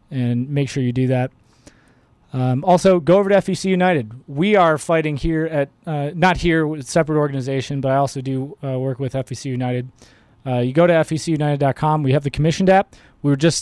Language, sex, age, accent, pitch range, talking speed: English, male, 20-39, American, 130-165 Hz, 205 wpm